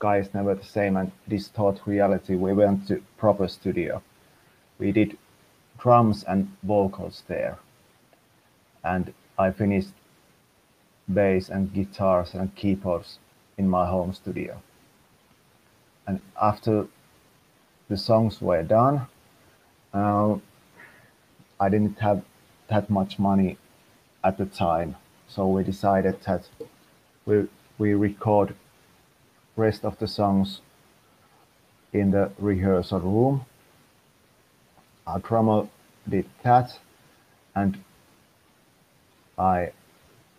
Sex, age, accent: male, 30-49, Finnish